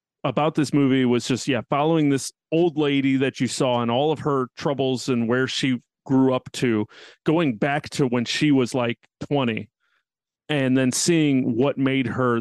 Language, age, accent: English, 30-49, American